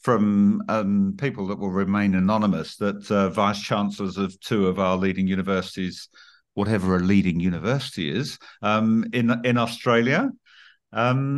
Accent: British